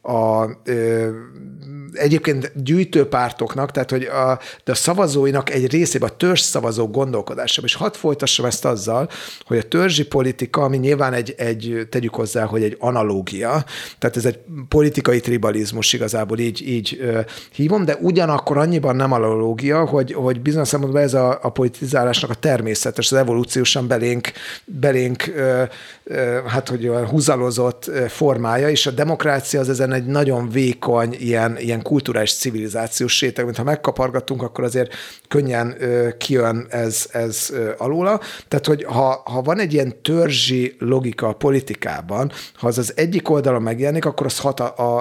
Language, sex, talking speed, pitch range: Hungarian, male, 150 wpm, 120-145 Hz